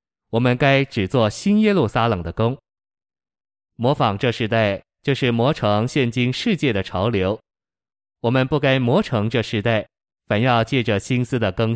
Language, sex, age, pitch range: Chinese, male, 20-39, 105-130 Hz